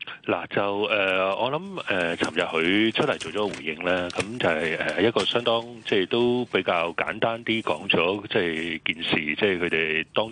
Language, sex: Chinese, male